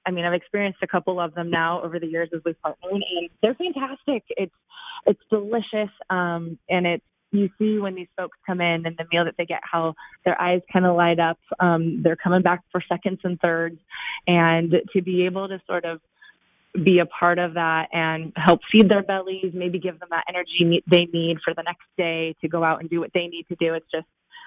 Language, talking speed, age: English, 225 wpm, 20-39